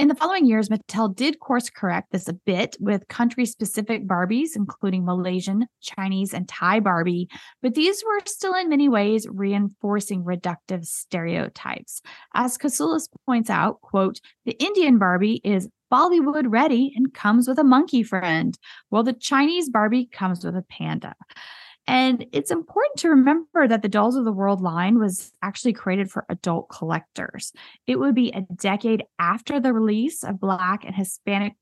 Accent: American